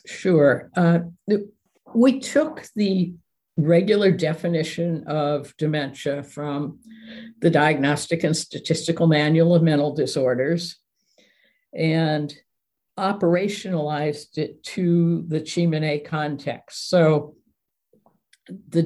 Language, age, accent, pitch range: English, 60-79, American, 150-175 Hz